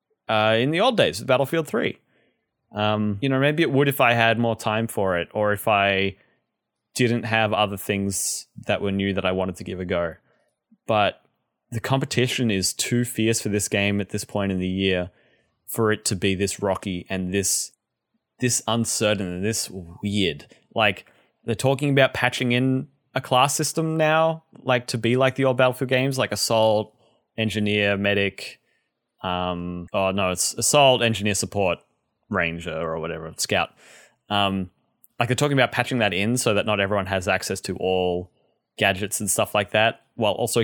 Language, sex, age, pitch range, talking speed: English, male, 20-39, 100-130 Hz, 180 wpm